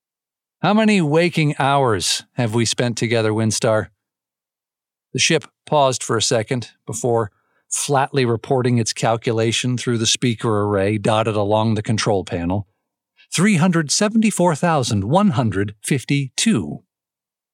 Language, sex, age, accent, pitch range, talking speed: English, male, 50-69, American, 120-185 Hz, 105 wpm